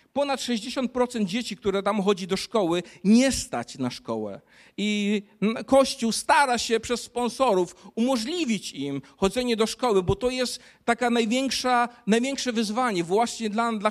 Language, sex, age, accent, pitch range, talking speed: Polish, male, 50-69, native, 150-225 Hz, 140 wpm